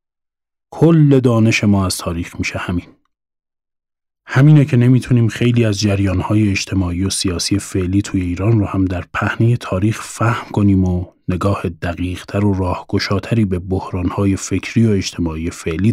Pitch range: 95-115 Hz